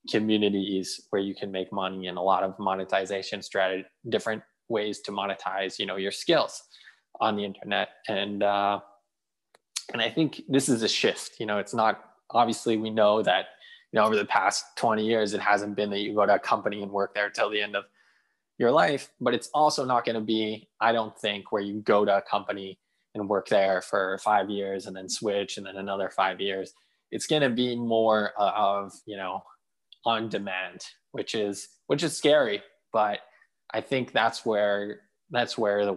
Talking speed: 195 wpm